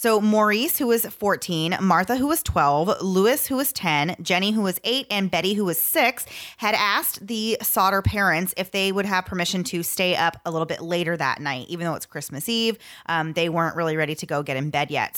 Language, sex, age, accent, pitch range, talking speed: English, female, 30-49, American, 155-200 Hz, 225 wpm